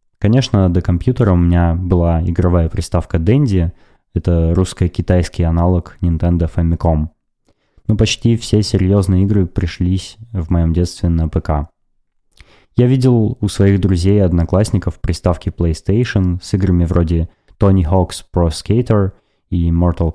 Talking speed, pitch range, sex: 130 wpm, 85-100 Hz, male